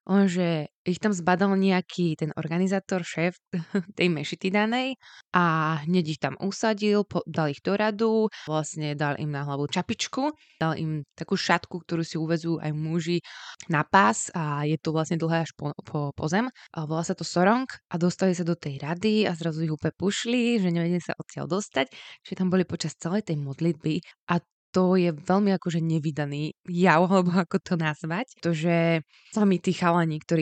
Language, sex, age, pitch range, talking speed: Slovak, female, 20-39, 155-180 Hz, 180 wpm